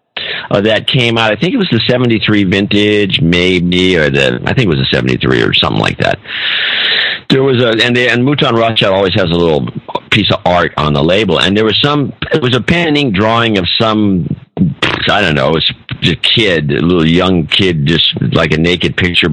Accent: American